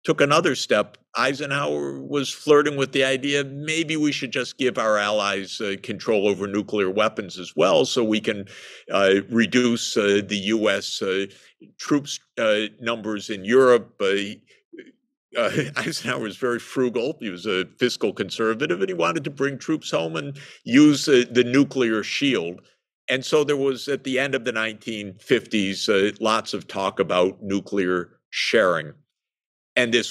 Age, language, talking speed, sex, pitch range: 50-69, English, 160 wpm, male, 100-140 Hz